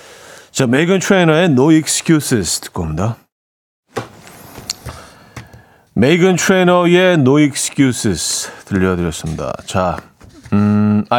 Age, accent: 40-59, native